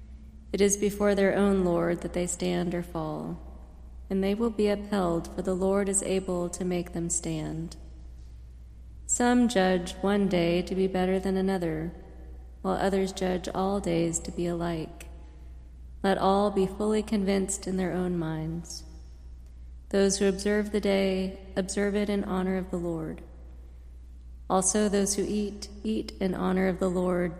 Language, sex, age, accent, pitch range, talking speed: English, female, 30-49, American, 160-200 Hz, 160 wpm